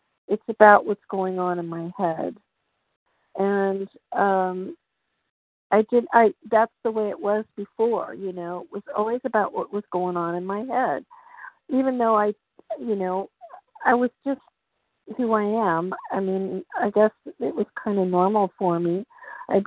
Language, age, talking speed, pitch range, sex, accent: English, 50-69, 170 wpm, 180-225 Hz, female, American